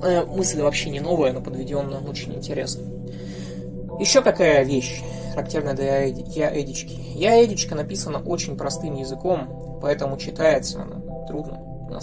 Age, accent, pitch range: 20-39, native, 135-205 Hz